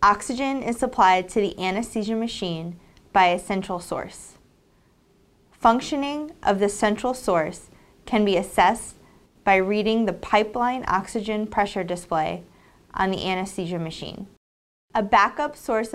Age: 20-39